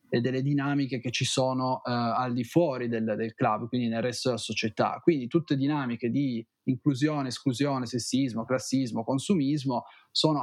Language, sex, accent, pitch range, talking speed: Italian, male, native, 120-145 Hz, 160 wpm